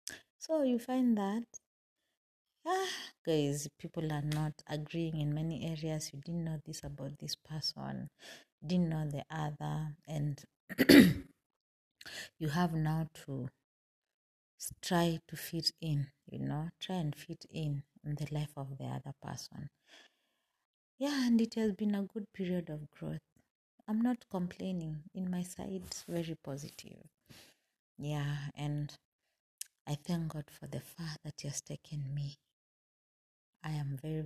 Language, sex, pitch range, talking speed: English, female, 145-175 Hz, 140 wpm